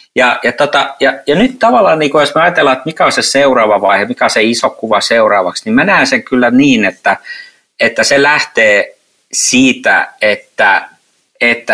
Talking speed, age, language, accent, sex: 185 wpm, 50-69, Finnish, native, male